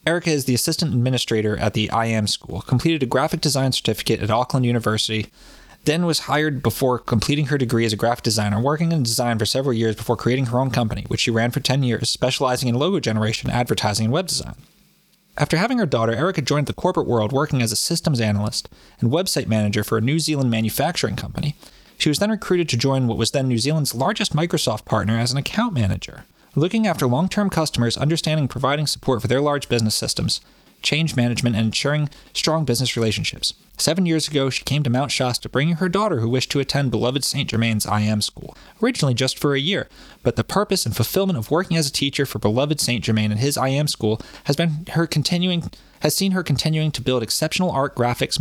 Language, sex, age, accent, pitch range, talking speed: English, male, 20-39, American, 115-155 Hz, 210 wpm